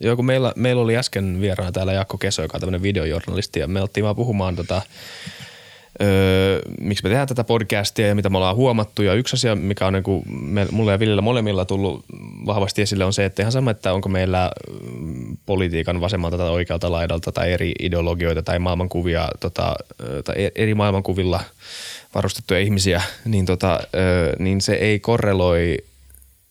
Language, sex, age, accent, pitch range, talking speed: Finnish, male, 20-39, native, 90-110 Hz, 170 wpm